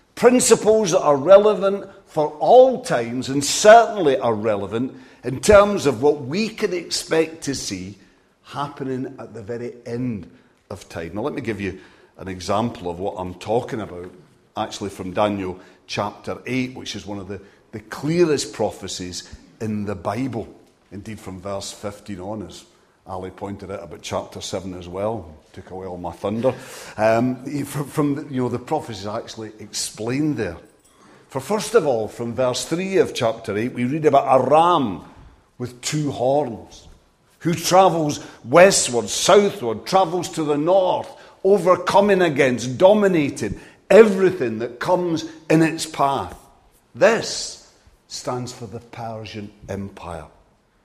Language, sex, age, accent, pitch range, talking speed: English, male, 50-69, British, 105-160 Hz, 145 wpm